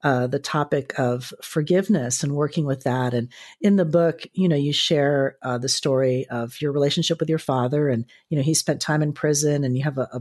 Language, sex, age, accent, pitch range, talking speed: English, female, 40-59, American, 140-185 Hz, 230 wpm